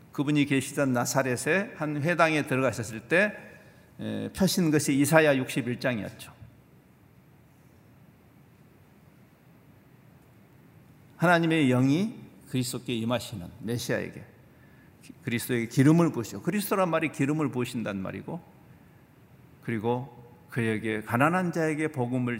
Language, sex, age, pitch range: Korean, male, 50-69, 125-170 Hz